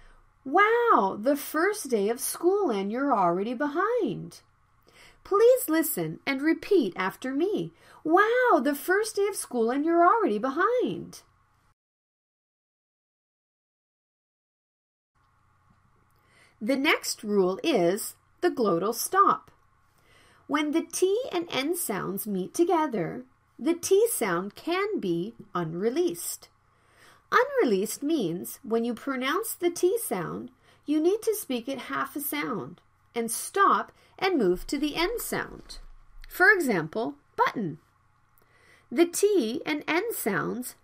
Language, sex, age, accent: Korean, female, 40-59, American